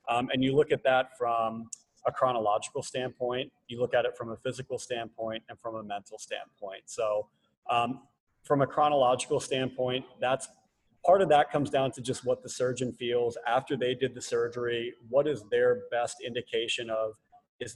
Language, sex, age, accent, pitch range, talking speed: English, male, 30-49, American, 120-150 Hz, 180 wpm